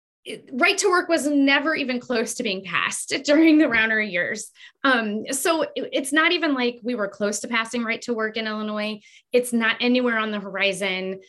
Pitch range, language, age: 200-270 Hz, English, 20-39